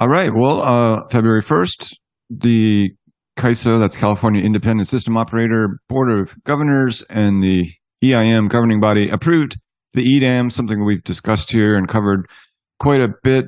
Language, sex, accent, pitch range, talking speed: English, male, American, 100-120 Hz, 145 wpm